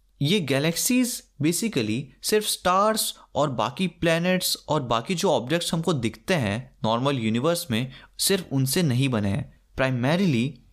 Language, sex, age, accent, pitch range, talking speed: Hindi, male, 20-39, native, 120-185 Hz, 135 wpm